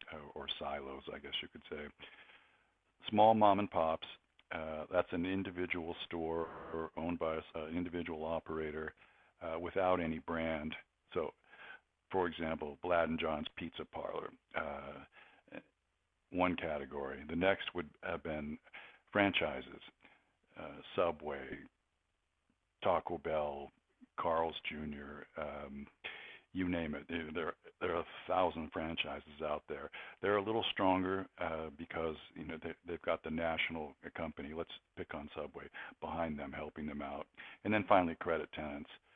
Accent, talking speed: American, 140 wpm